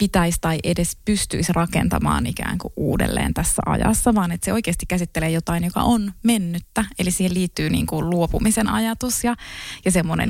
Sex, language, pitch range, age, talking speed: female, Finnish, 170-220 Hz, 20-39, 165 wpm